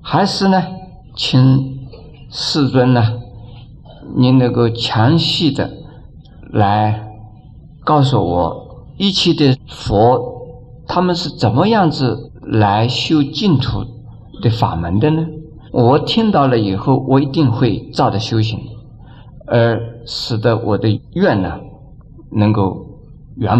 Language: Chinese